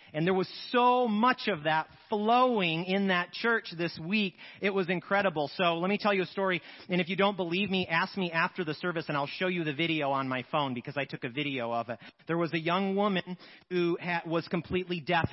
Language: English